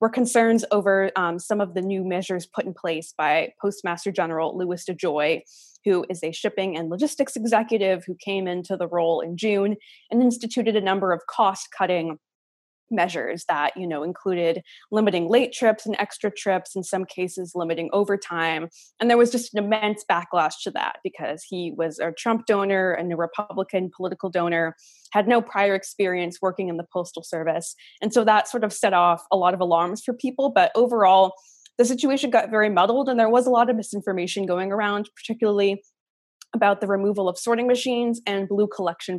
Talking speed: 190 wpm